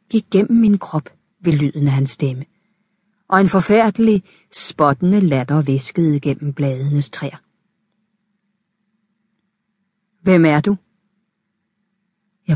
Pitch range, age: 155-205 Hz, 40-59